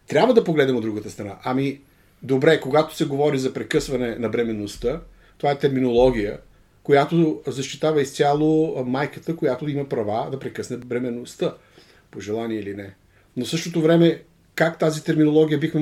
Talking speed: 150 wpm